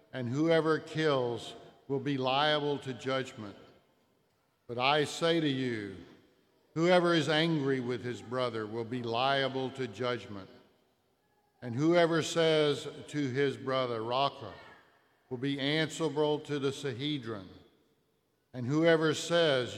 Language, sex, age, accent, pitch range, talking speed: English, male, 50-69, American, 130-155 Hz, 120 wpm